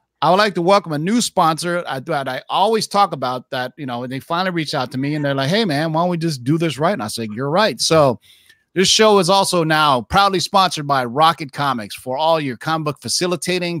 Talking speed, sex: 250 wpm, male